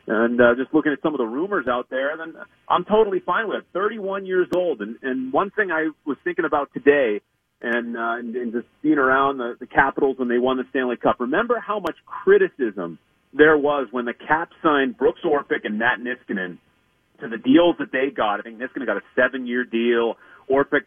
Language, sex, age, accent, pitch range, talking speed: English, male, 30-49, American, 125-195 Hz, 215 wpm